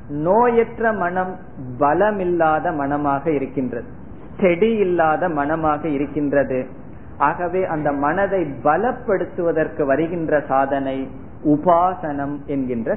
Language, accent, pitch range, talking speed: Tamil, native, 145-195 Hz, 85 wpm